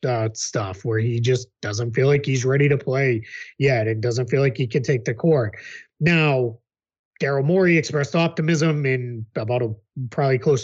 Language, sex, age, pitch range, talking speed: English, male, 20-39, 120-155 Hz, 180 wpm